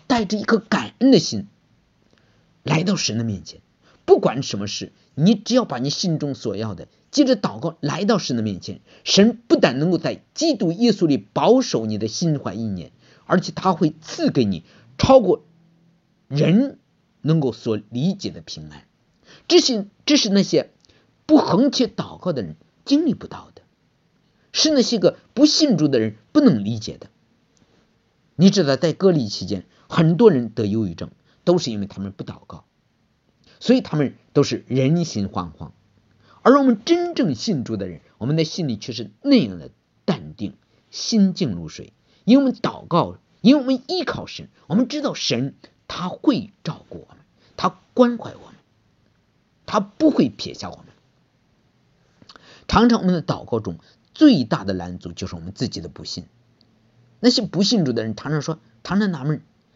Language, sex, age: English, male, 50-69